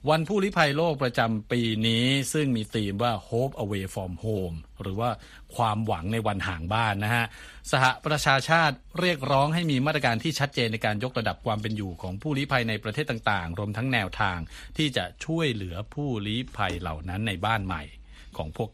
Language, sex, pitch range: Thai, male, 100-130 Hz